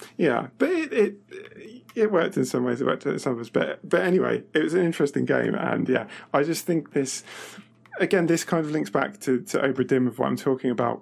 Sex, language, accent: male, English, British